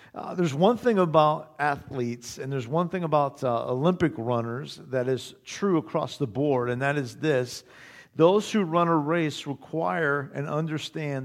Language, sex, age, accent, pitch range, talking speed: English, male, 50-69, American, 115-155 Hz, 170 wpm